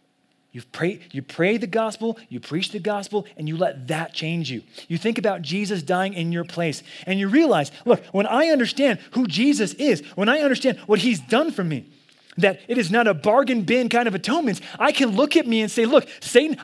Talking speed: 215 wpm